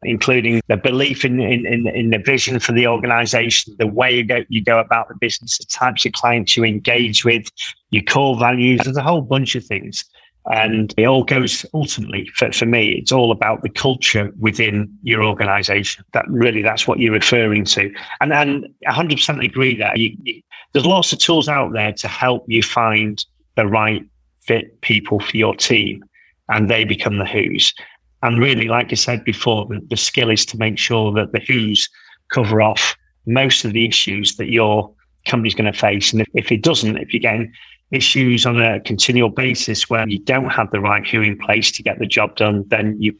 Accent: British